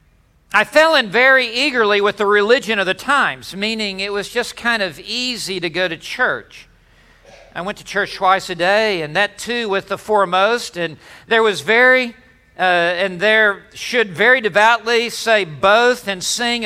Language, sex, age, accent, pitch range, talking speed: English, male, 50-69, American, 200-255 Hz, 175 wpm